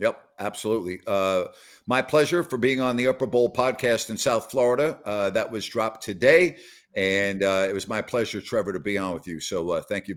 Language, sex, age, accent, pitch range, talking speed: English, male, 50-69, American, 105-135 Hz, 210 wpm